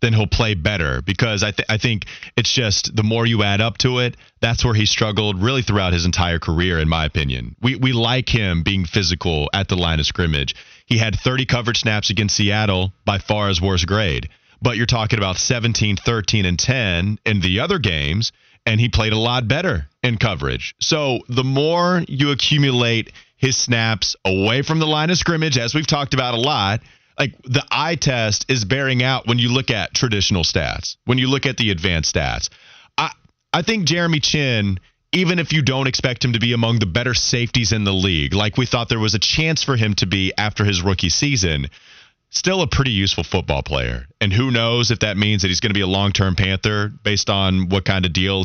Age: 30-49